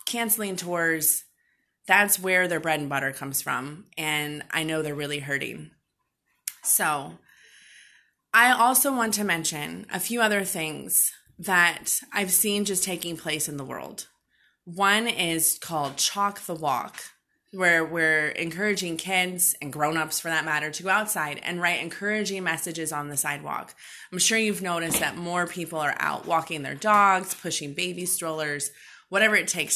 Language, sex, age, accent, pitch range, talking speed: English, female, 20-39, American, 160-200 Hz, 155 wpm